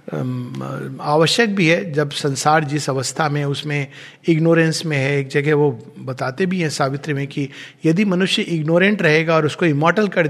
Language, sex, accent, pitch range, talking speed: Hindi, male, native, 150-205 Hz, 170 wpm